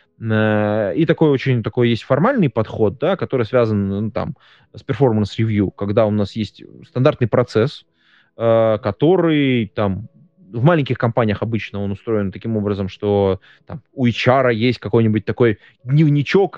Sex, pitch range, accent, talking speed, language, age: male, 105-135 Hz, native, 145 wpm, Russian, 20-39